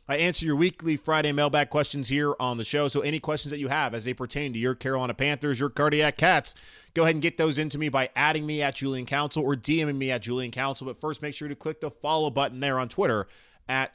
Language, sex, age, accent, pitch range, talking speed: English, male, 30-49, American, 120-155 Hz, 255 wpm